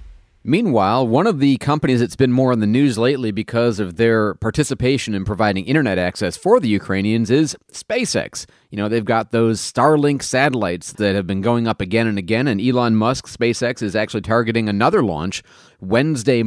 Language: English